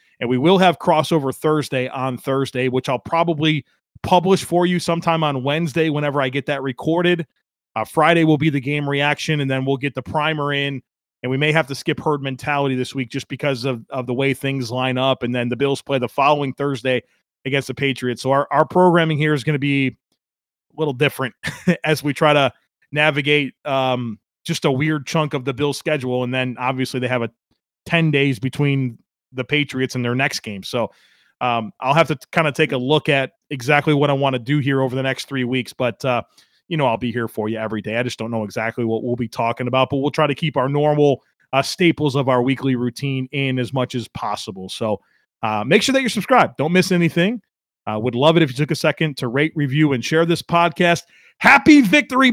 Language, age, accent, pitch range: English, 30-49, American, 130-155 Hz